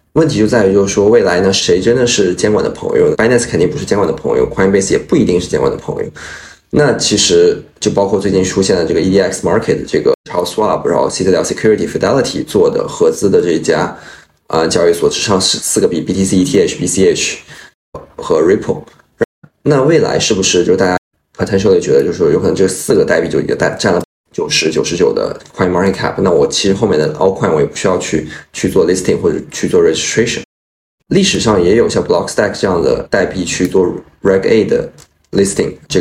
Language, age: Chinese, 20-39